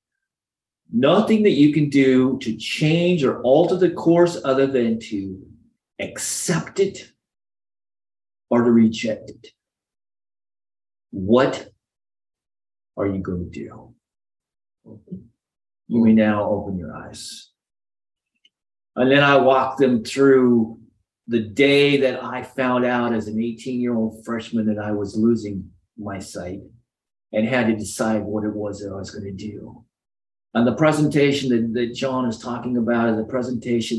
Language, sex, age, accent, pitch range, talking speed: English, male, 40-59, American, 110-165 Hz, 140 wpm